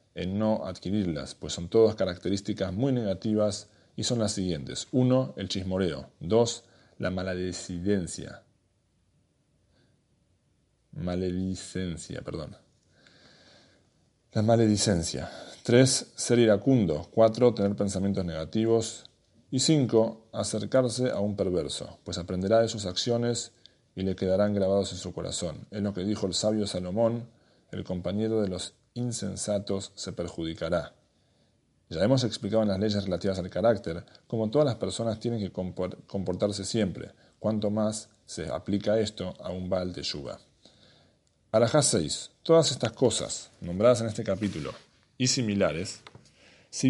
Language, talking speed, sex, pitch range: English, 130 wpm, male, 95-115 Hz